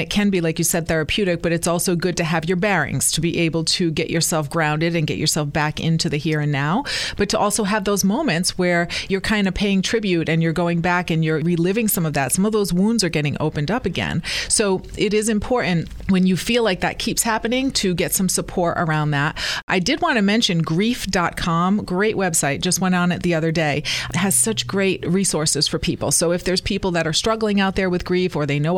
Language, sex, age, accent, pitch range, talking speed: English, female, 30-49, American, 160-195 Hz, 240 wpm